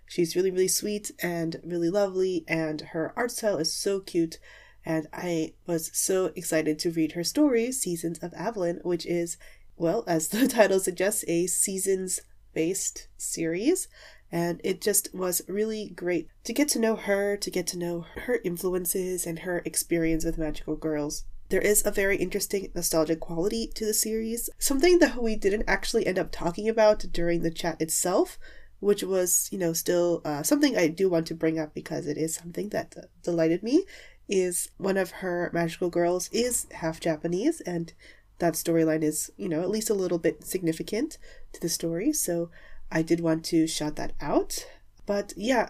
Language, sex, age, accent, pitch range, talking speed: English, female, 30-49, American, 165-210 Hz, 180 wpm